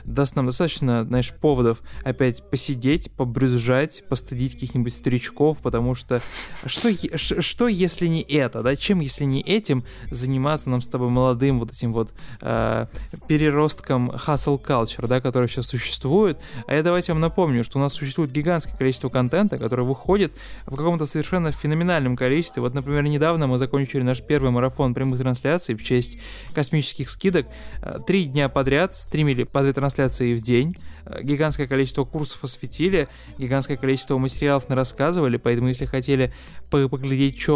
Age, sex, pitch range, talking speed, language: 20-39, male, 125-155 Hz, 155 wpm, Russian